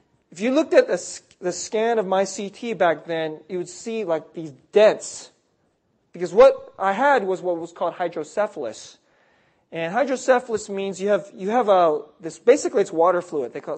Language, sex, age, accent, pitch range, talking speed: English, male, 30-49, American, 155-215 Hz, 180 wpm